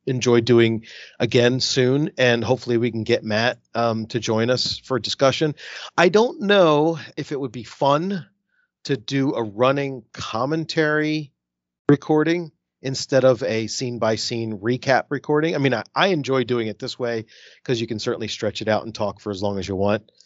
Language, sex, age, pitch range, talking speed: English, male, 40-59, 110-135 Hz, 185 wpm